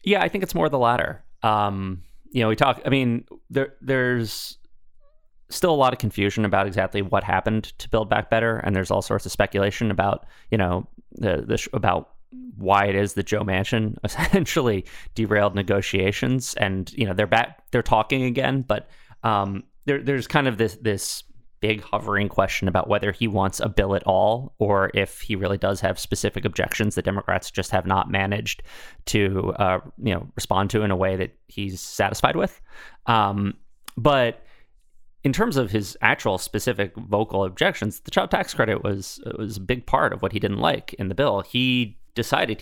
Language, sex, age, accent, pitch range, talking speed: English, male, 20-39, American, 95-115 Hz, 190 wpm